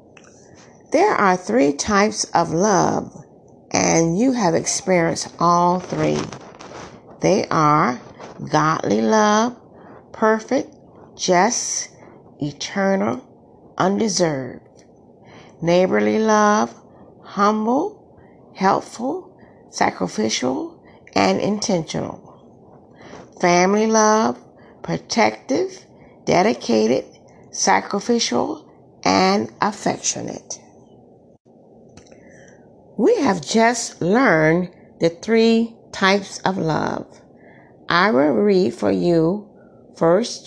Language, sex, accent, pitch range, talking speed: English, female, American, 165-220 Hz, 75 wpm